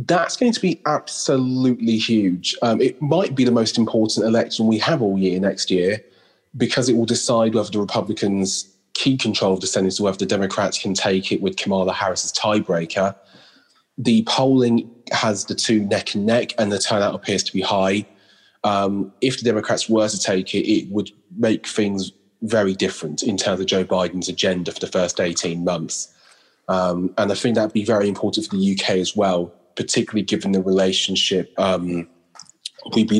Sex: male